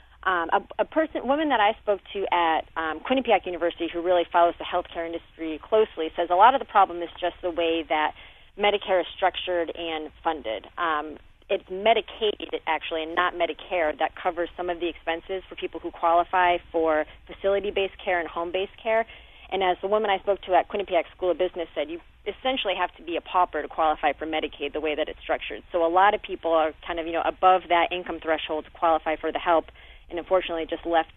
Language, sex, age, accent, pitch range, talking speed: English, female, 30-49, American, 160-190 Hz, 215 wpm